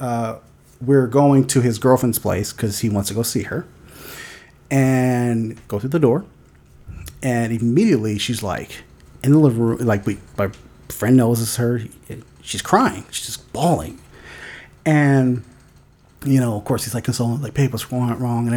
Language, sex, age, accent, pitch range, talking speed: English, male, 30-49, American, 115-155 Hz, 165 wpm